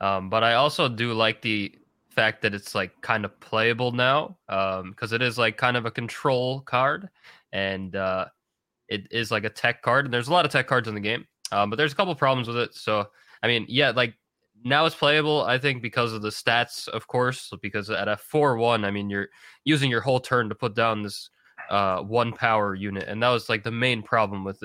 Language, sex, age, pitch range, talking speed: English, male, 20-39, 105-135 Hz, 230 wpm